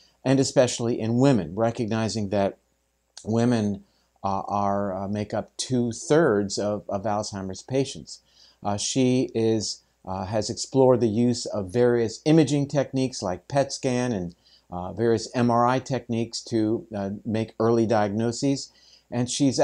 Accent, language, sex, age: American, English, male, 50-69